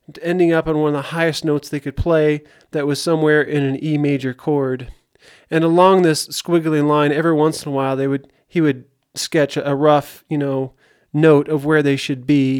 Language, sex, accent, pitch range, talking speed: English, male, American, 140-165 Hz, 210 wpm